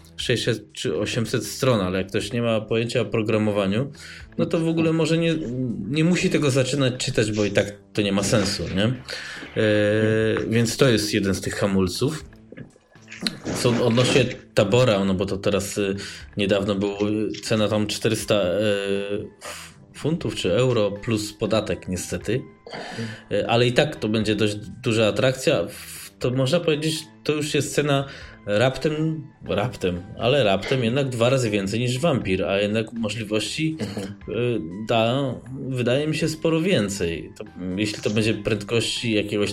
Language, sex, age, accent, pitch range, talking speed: Polish, male, 20-39, native, 100-125 Hz, 150 wpm